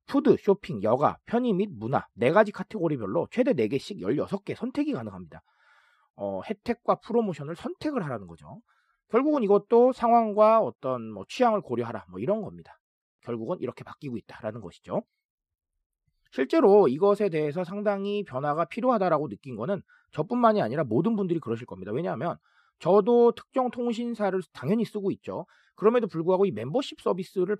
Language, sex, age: Korean, male, 40-59